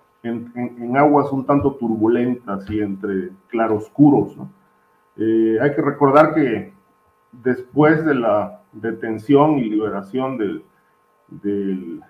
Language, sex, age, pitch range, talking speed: Spanish, male, 40-59, 115-155 Hz, 120 wpm